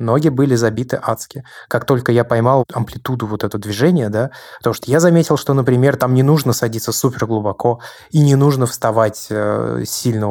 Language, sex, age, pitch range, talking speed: Russian, male, 20-39, 110-125 Hz, 175 wpm